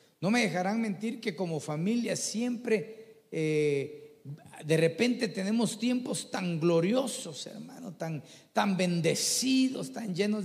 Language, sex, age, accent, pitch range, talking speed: Spanish, male, 40-59, Mexican, 155-215 Hz, 120 wpm